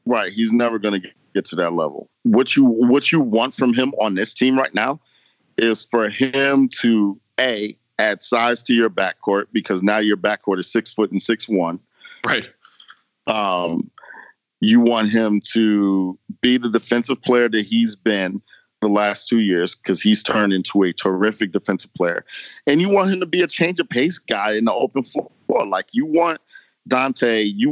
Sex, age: male, 50-69